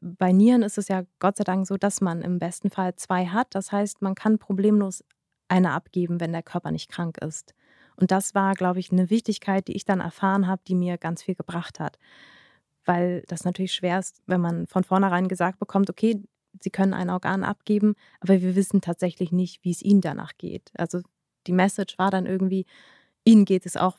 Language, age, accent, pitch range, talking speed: German, 20-39, German, 180-205 Hz, 210 wpm